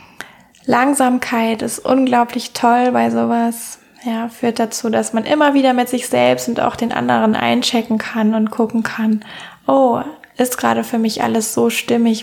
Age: 20-39